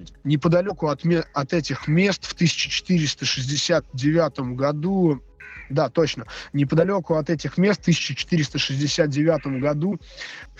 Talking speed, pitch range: 90 wpm, 130-165 Hz